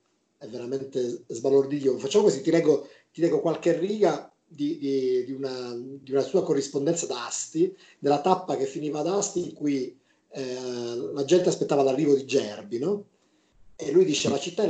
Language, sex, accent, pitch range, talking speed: Italian, male, native, 135-170 Hz, 175 wpm